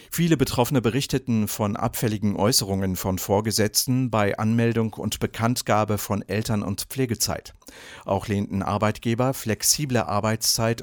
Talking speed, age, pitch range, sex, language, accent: 115 wpm, 50-69, 100-125 Hz, male, English, German